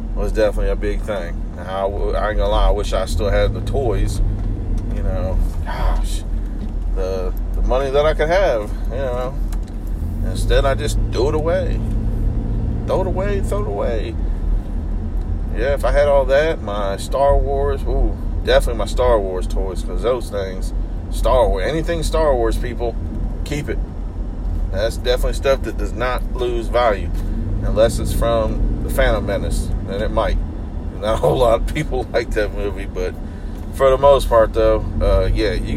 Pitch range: 85-110 Hz